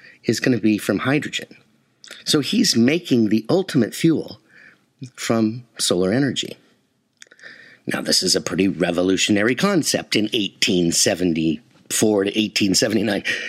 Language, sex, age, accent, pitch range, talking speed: English, male, 50-69, American, 105-150 Hz, 105 wpm